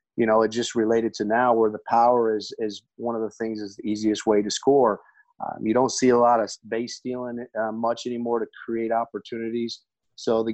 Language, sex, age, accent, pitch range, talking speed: English, male, 30-49, American, 110-125 Hz, 220 wpm